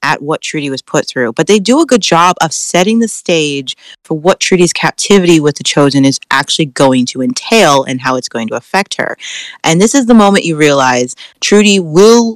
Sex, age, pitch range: female, 30-49, 140-190 Hz